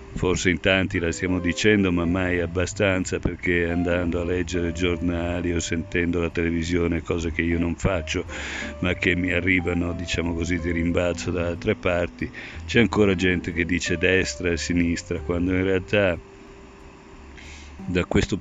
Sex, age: male, 50-69